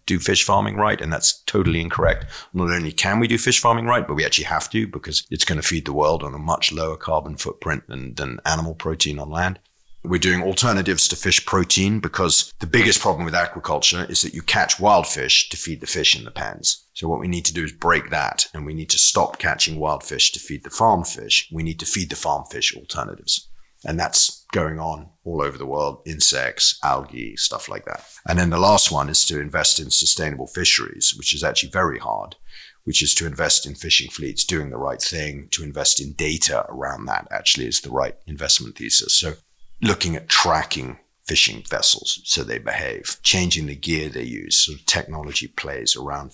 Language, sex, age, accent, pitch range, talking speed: English, male, 40-59, British, 75-90 Hz, 215 wpm